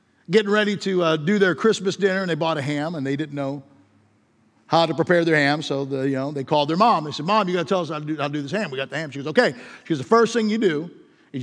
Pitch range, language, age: 155-250 Hz, English, 50-69